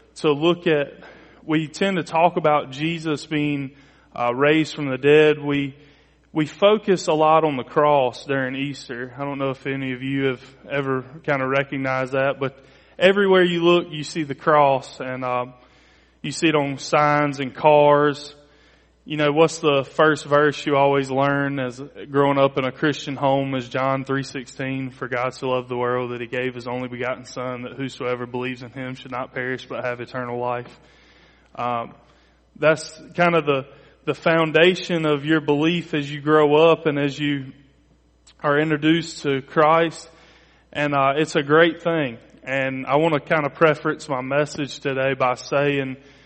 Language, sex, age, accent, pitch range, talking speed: English, male, 20-39, American, 130-155 Hz, 180 wpm